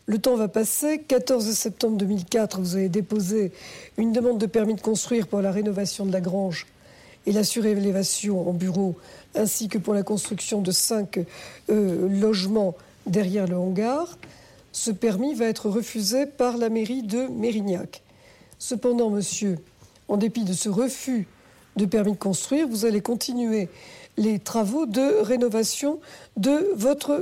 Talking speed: 150 wpm